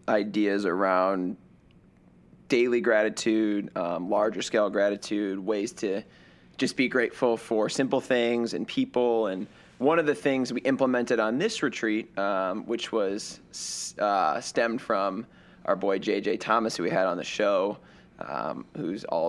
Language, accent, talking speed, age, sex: English, American, 145 wpm, 20-39, male